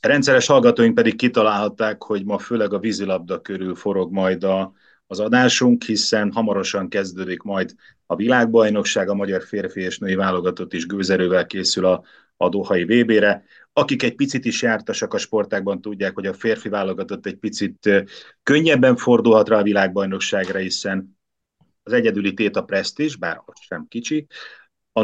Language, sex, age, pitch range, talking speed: Hungarian, male, 30-49, 95-120 Hz, 155 wpm